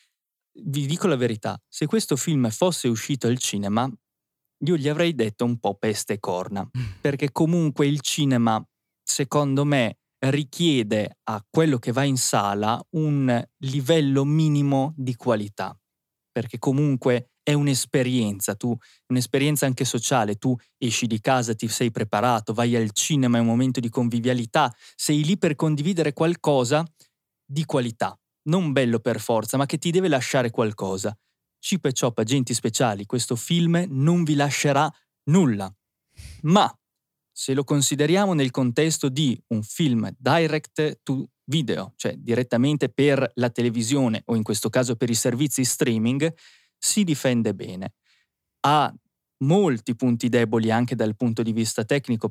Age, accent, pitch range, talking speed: 20-39, native, 115-145 Hz, 145 wpm